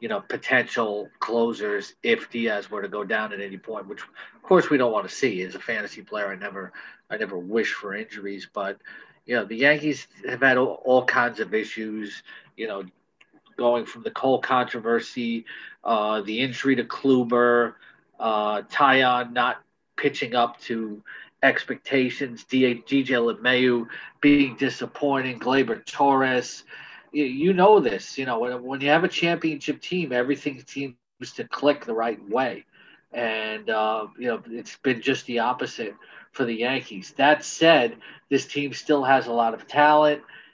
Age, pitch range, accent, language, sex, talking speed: 40-59, 115-140 Hz, American, English, male, 160 wpm